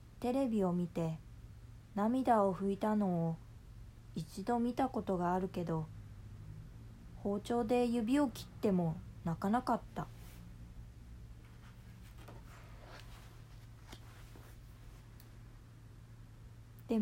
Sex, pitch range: female, 115-190 Hz